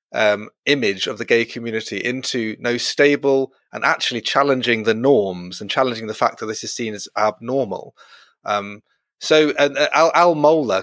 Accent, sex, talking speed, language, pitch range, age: British, male, 165 wpm, English, 110-145 Hz, 30-49